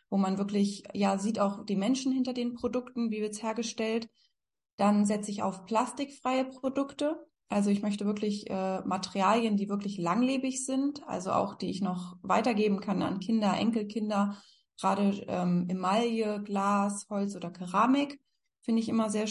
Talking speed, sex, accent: 160 wpm, female, German